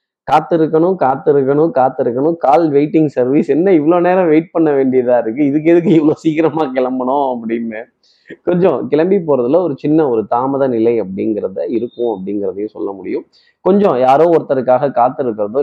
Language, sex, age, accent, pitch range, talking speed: Tamil, male, 20-39, native, 130-170 Hz, 140 wpm